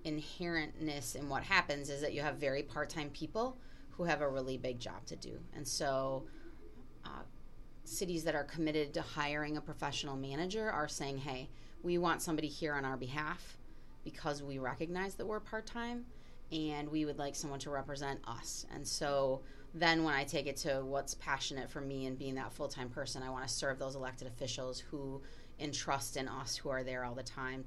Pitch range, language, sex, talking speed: 135-155 Hz, English, female, 195 wpm